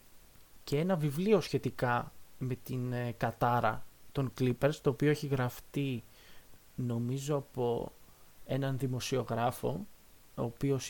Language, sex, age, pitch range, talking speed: Greek, male, 20-39, 120-155 Hz, 105 wpm